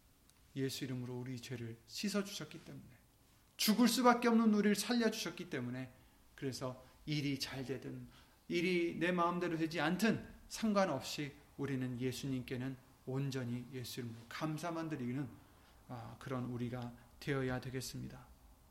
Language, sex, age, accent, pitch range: Korean, male, 30-49, native, 120-155 Hz